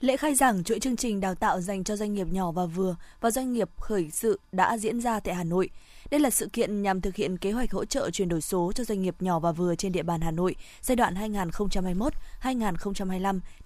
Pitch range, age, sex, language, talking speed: 185-225 Hz, 20-39, female, Vietnamese, 235 wpm